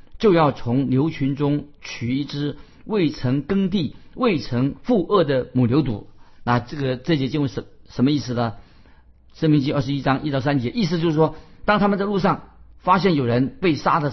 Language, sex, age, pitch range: Chinese, male, 50-69, 120-160 Hz